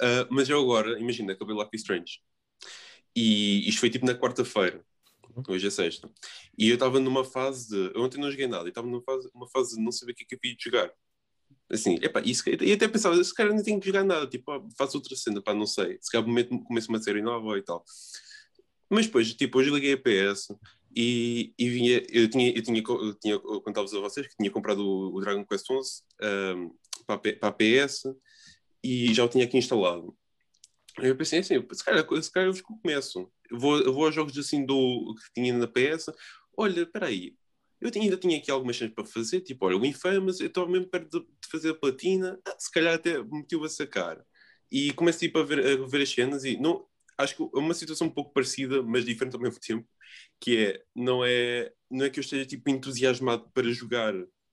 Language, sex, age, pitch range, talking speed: English, male, 20-39, 115-155 Hz, 220 wpm